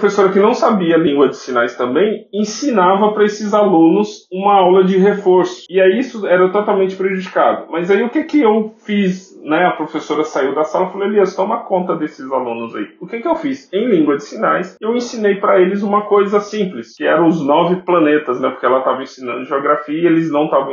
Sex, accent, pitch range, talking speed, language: male, Brazilian, 130-190 Hz, 215 wpm, Portuguese